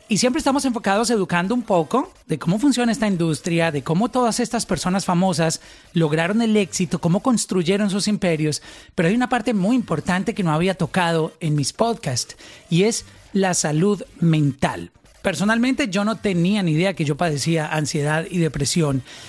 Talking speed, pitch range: 170 wpm, 165-215 Hz